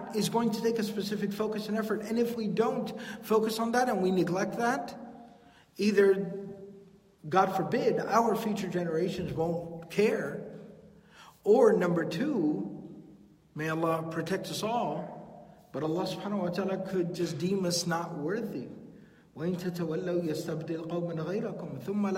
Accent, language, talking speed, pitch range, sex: American, English, 130 wpm, 170-225 Hz, male